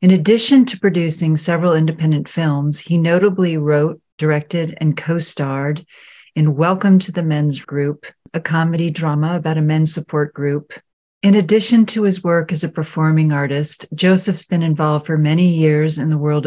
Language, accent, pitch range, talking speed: English, American, 150-175 Hz, 165 wpm